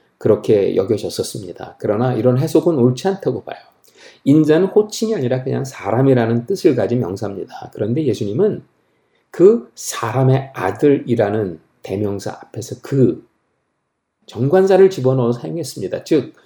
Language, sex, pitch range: Korean, male, 115-165 Hz